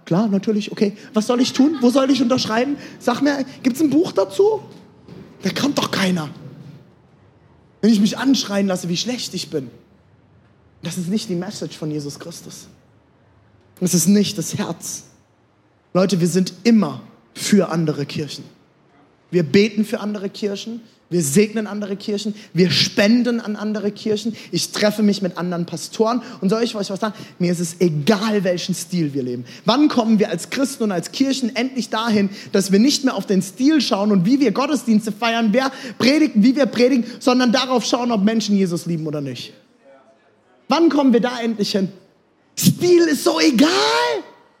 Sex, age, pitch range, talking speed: male, 20-39, 190-300 Hz, 180 wpm